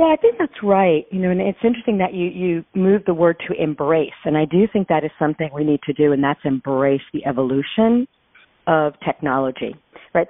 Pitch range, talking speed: 155-195 Hz, 215 wpm